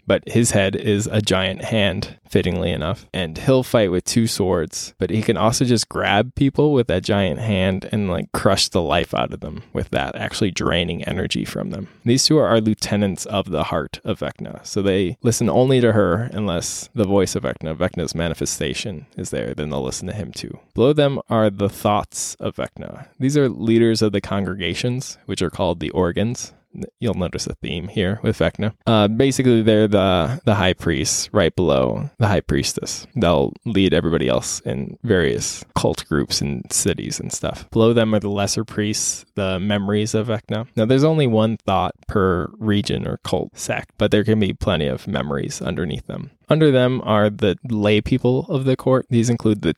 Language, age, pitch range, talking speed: English, 20-39, 95-115 Hz, 195 wpm